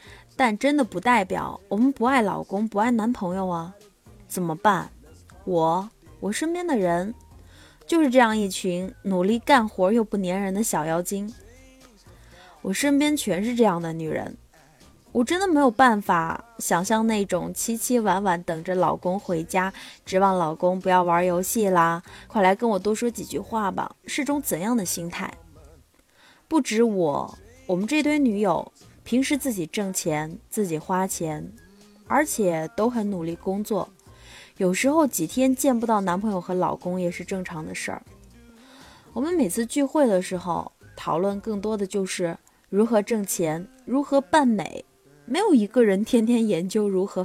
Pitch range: 180-240 Hz